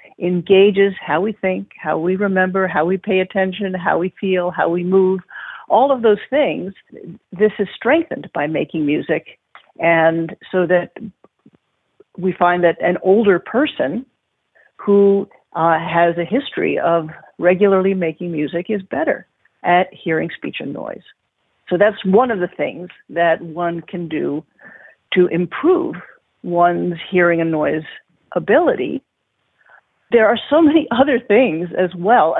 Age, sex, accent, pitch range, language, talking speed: 50-69, female, American, 170-210 Hz, English, 145 wpm